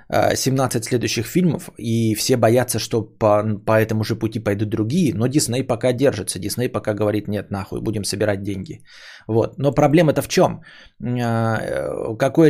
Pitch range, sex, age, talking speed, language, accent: 110-155 Hz, male, 20-39, 150 wpm, Russian, native